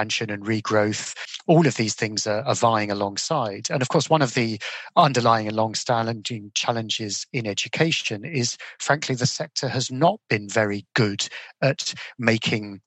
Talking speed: 155 wpm